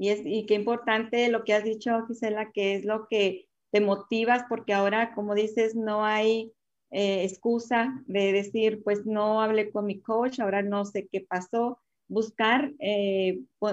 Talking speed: 170 wpm